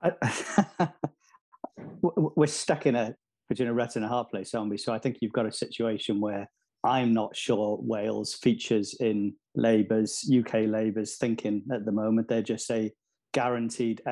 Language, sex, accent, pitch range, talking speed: English, male, British, 110-125 Hz, 155 wpm